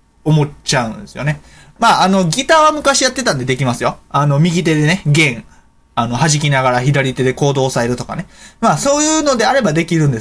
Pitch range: 135-190 Hz